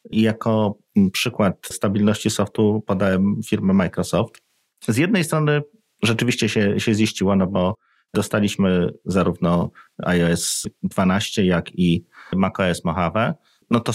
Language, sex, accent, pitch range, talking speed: Polish, male, native, 95-110 Hz, 110 wpm